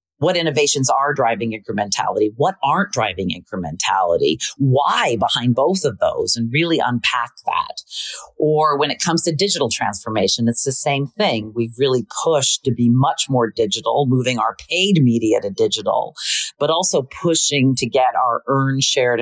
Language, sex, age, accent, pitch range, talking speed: English, female, 40-59, American, 130-175 Hz, 160 wpm